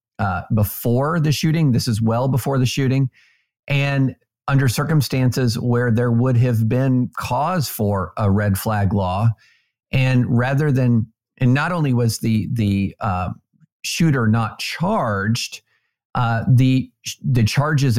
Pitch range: 110-135 Hz